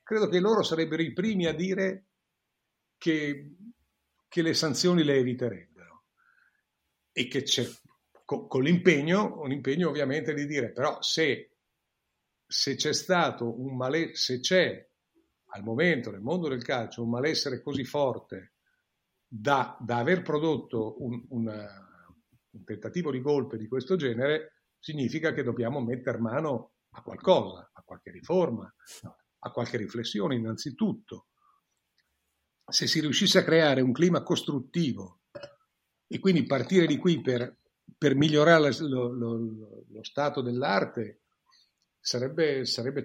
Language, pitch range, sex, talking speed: Italian, 125-165 Hz, male, 130 wpm